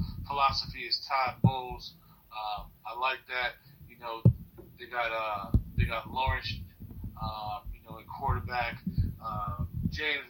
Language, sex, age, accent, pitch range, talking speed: English, male, 30-49, American, 100-130 Hz, 135 wpm